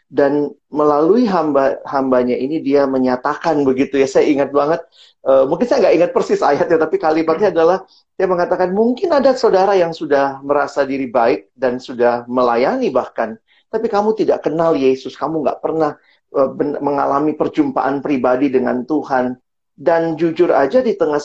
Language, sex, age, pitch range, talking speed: Indonesian, male, 40-59, 125-160 Hz, 160 wpm